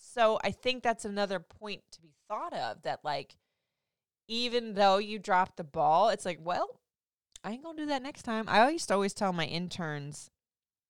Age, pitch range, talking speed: 20-39, 160-210 Hz, 200 wpm